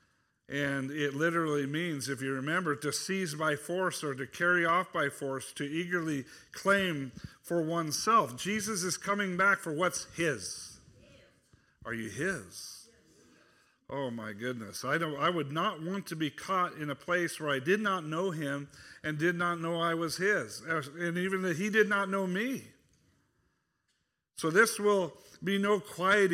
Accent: American